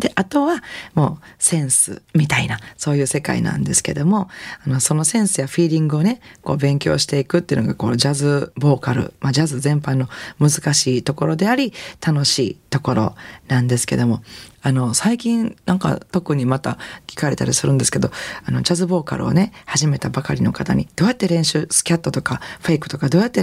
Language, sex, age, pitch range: Japanese, female, 40-59, 135-175 Hz